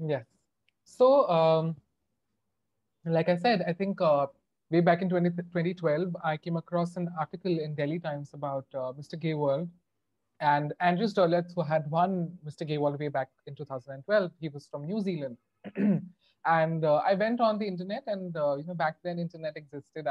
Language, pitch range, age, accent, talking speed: English, 150-200 Hz, 30-49, Indian, 175 wpm